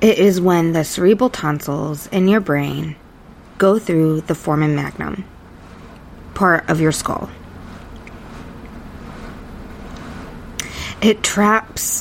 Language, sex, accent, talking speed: English, female, American, 100 wpm